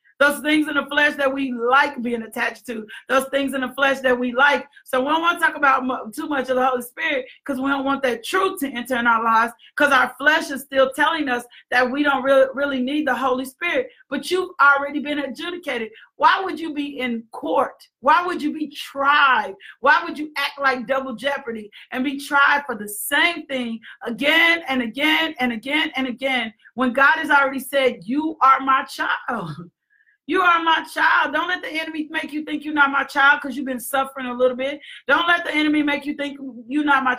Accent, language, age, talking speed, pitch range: American, English, 40-59, 220 wpm, 260-300 Hz